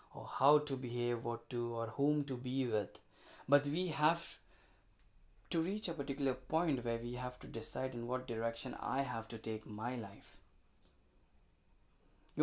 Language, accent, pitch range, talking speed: Hindi, native, 115-150 Hz, 165 wpm